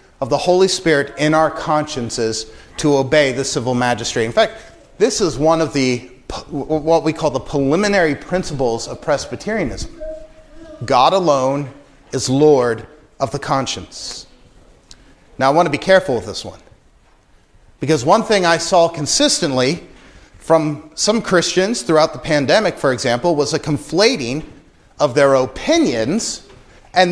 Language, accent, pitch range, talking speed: English, American, 145-225 Hz, 140 wpm